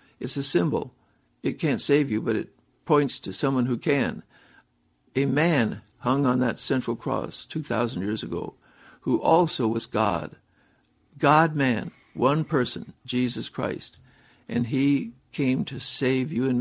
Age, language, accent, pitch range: 60-79, English, American, 115-135 Hz